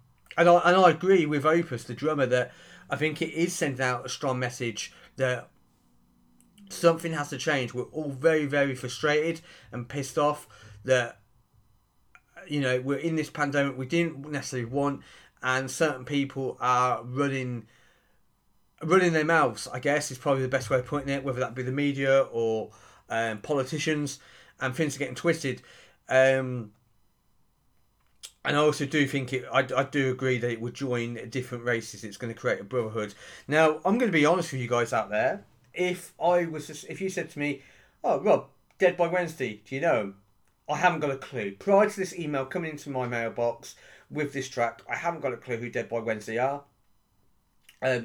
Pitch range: 120-155 Hz